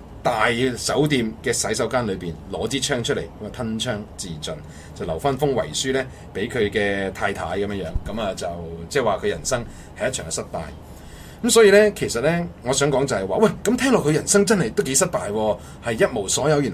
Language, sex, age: Chinese, male, 30-49